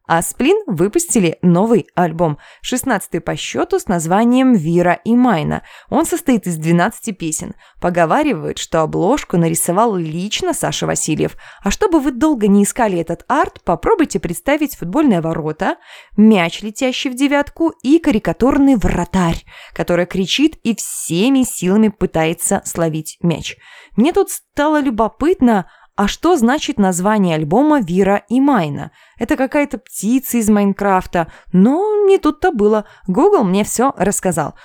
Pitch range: 175-270 Hz